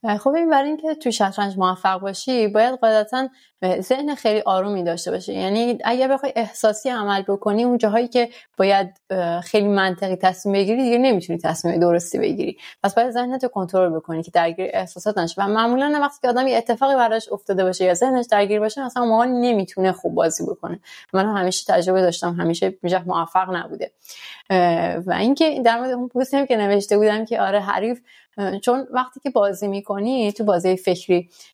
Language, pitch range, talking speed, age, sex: Persian, 195-250 Hz, 175 wpm, 20-39, female